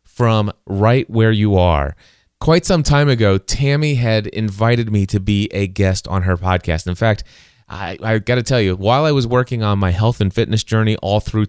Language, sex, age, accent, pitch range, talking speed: English, male, 30-49, American, 95-120 Hz, 205 wpm